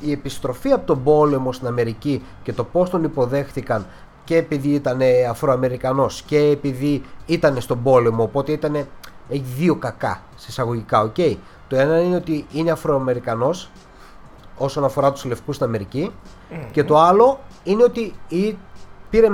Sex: male